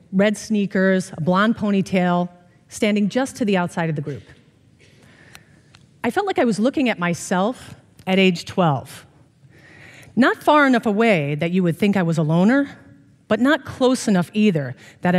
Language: English